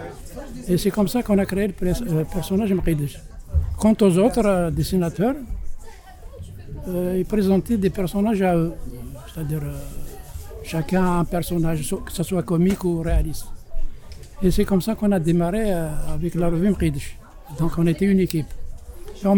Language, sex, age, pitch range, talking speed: Arabic, male, 60-79, 160-195 Hz, 160 wpm